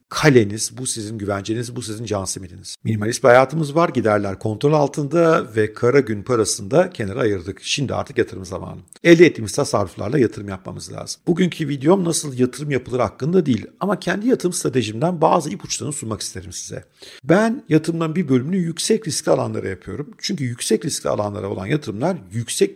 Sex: male